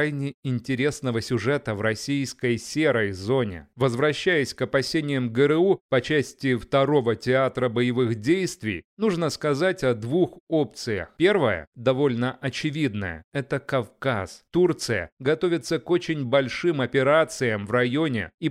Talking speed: 115 wpm